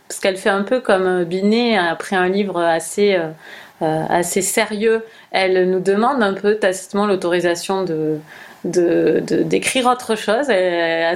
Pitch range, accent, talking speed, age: 180-210 Hz, French, 155 wpm, 30-49